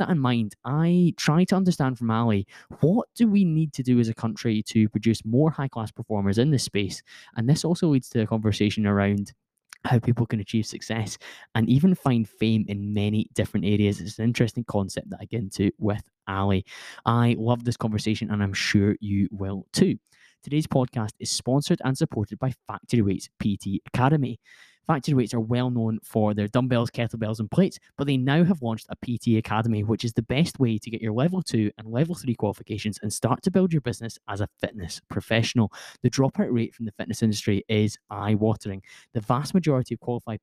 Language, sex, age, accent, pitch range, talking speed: English, male, 10-29, British, 105-130 Hz, 205 wpm